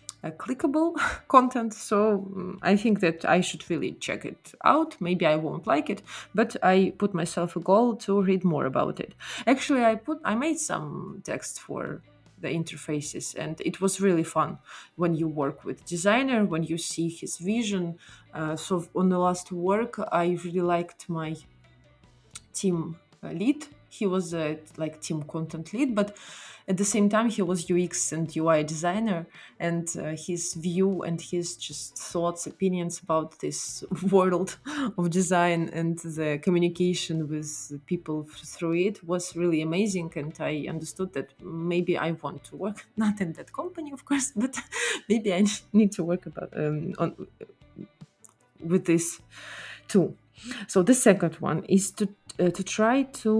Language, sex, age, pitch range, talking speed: English, female, 20-39, 165-205 Hz, 165 wpm